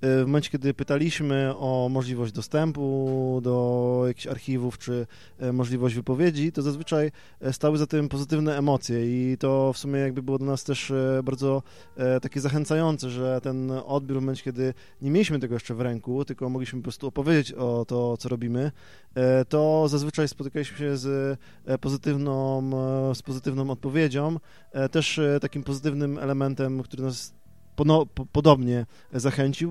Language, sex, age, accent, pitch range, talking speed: Polish, male, 20-39, native, 130-145 Hz, 140 wpm